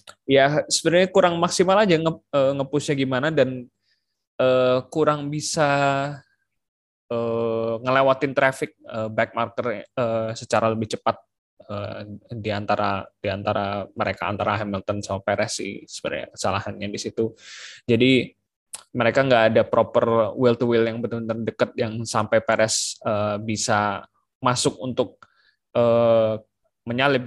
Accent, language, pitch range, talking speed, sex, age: native, Indonesian, 105-125 Hz, 120 wpm, male, 20-39